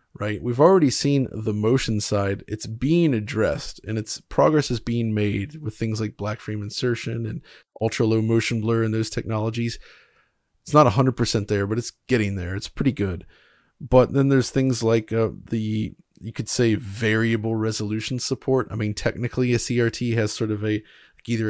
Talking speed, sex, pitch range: 185 wpm, male, 110-130 Hz